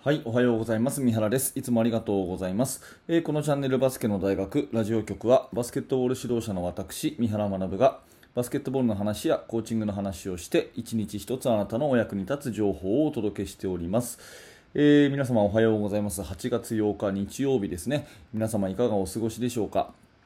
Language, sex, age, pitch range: Japanese, male, 20-39, 105-130 Hz